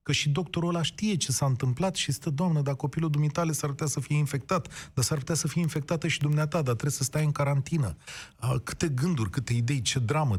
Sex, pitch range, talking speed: male, 115-155 Hz, 225 wpm